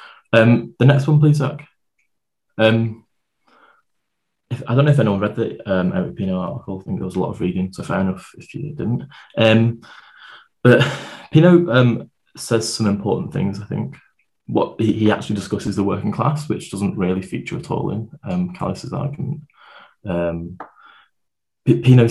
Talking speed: 170 wpm